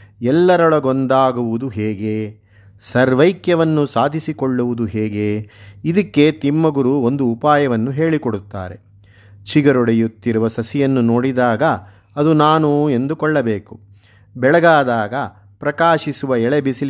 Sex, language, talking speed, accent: male, Kannada, 65 wpm, native